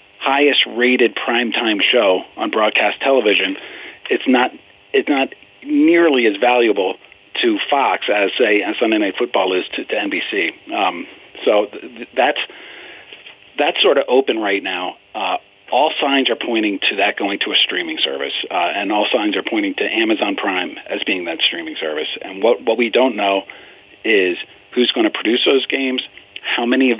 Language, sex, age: English, male, 40-59